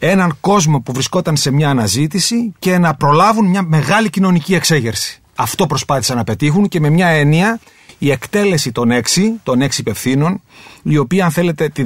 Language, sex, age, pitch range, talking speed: Greek, male, 30-49, 135-190 Hz, 170 wpm